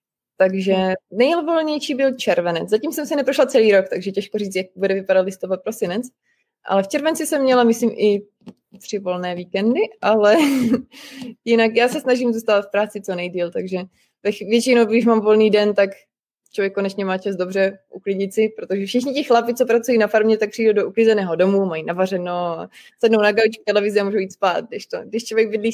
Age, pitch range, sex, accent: 20-39, 200-235 Hz, female, native